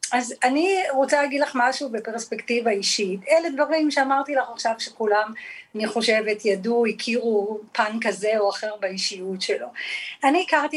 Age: 40-59